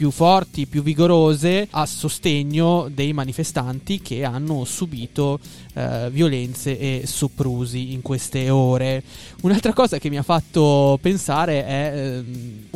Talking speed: 120 wpm